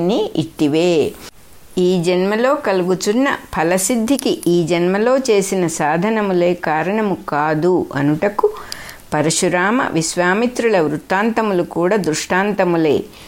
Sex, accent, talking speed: female, Indian, 70 wpm